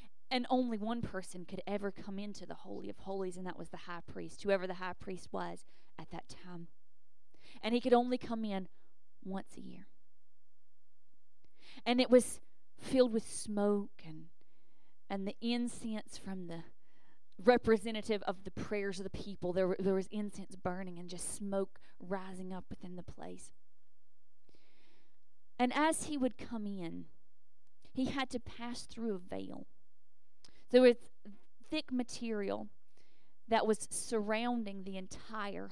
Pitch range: 175-240 Hz